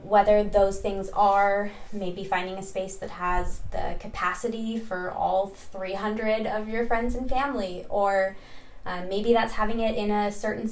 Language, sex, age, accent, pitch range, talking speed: English, female, 20-39, American, 190-225 Hz, 160 wpm